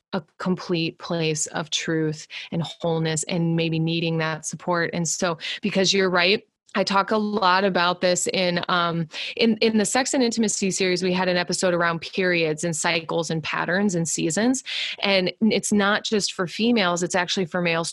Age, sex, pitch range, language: 20-39, female, 175-205 Hz, English